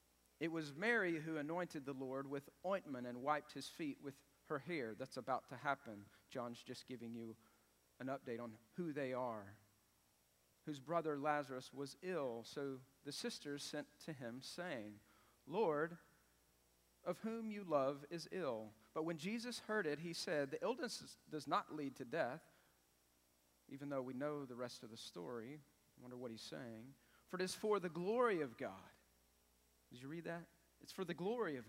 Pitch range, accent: 110-170 Hz, American